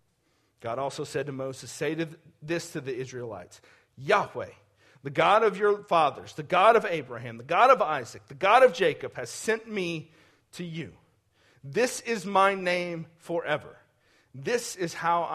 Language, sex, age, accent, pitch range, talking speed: English, male, 40-59, American, 130-220 Hz, 160 wpm